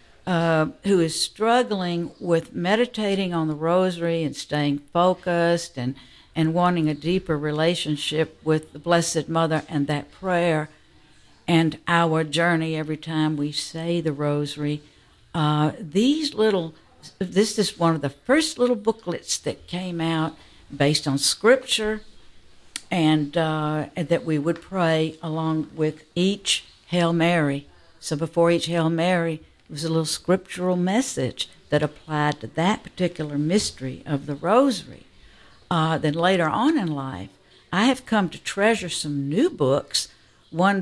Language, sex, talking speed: English, female, 145 wpm